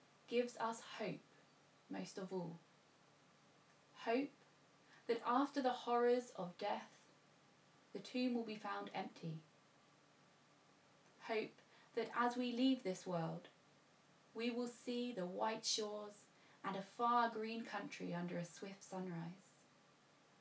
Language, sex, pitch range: English, female, 190-240 Hz